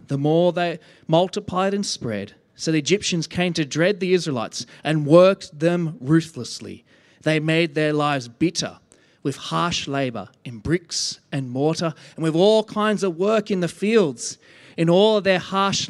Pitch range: 140-185 Hz